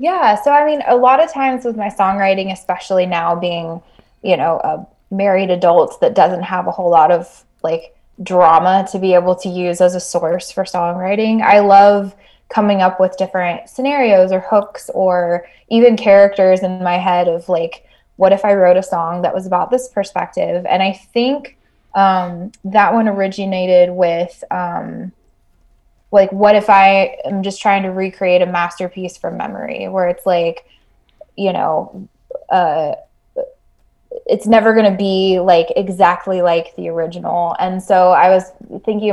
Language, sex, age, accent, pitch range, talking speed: English, female, 20-39, American, 175-200 Hz, 165 wpm